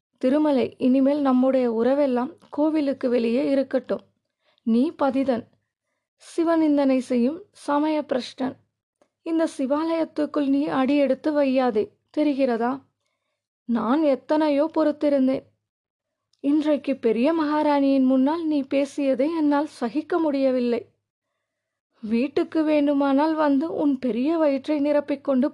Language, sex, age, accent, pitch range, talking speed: Tamil, female, 30-49, native, 255-300 Hz, 90 wpm